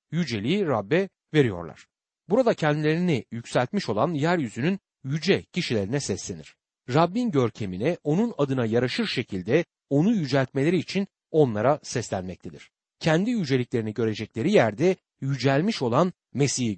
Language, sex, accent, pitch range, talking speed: Turkish, male, native, 115-180 Hz, 105 wpm